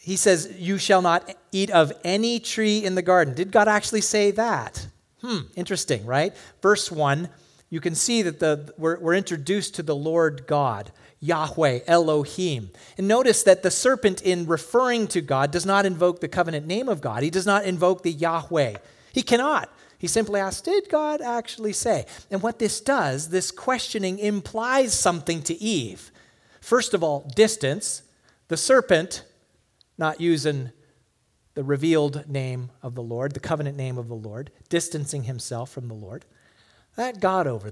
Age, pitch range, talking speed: 40-59, 150-215 Hz, 165 wpm